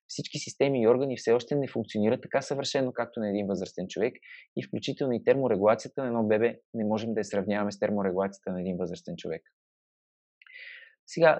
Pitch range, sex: 100-120 Hz, male